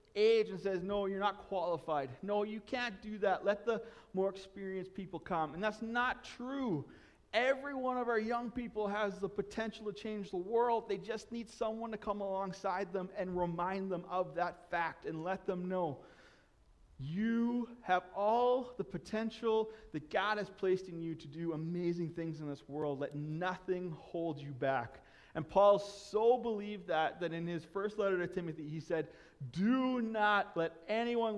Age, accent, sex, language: 30-49, American, male, English